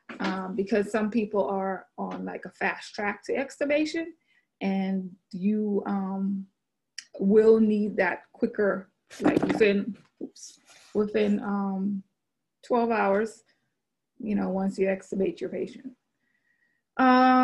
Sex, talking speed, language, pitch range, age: female, 115 wpm, English, 200-225 Hz, 20-39